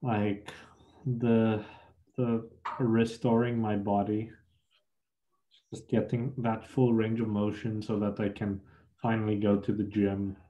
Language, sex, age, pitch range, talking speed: English, male, 20-39, 105-115 Hz, 125 wpm